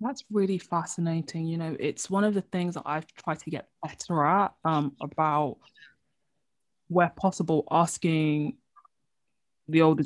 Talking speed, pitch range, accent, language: 145 wpm, 155-230 Hz, British, English